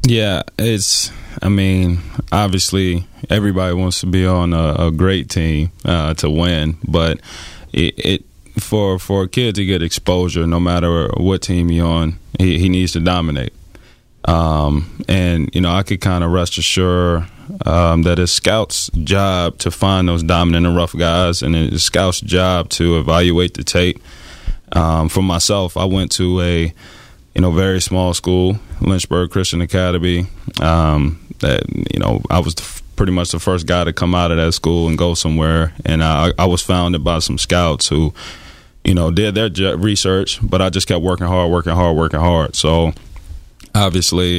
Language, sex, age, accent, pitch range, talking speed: English, male, 20-39, American, 80-90 Hz, 175 wpm